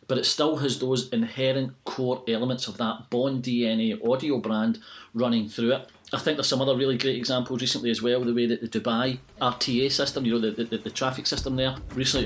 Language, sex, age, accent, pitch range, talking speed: English, male, 40-59, British, 115-130 Hz, 215 wpm